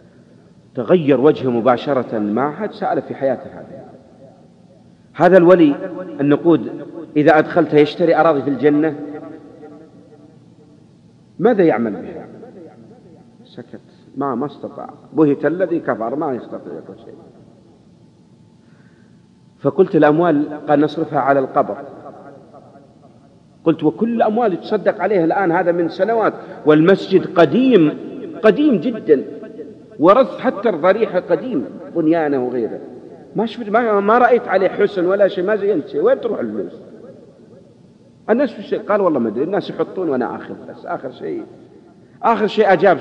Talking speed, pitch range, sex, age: 120 wpm, 140-195 Hz, male, 50-69